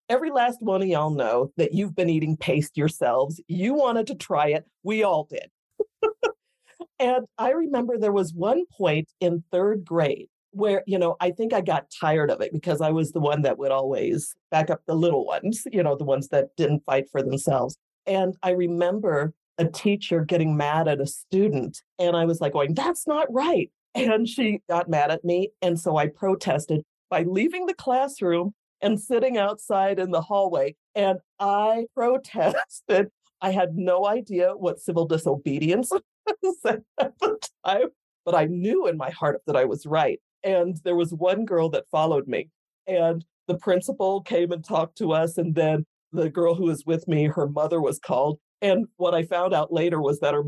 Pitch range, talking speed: 160-230 Hz, 190 wpm